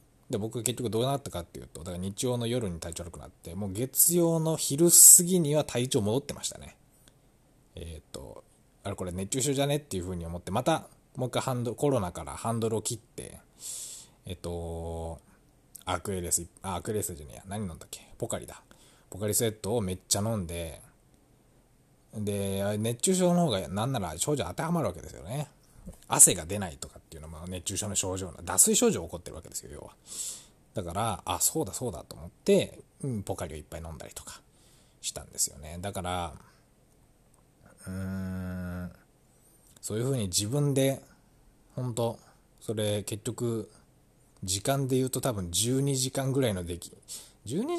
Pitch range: 90-130 Hz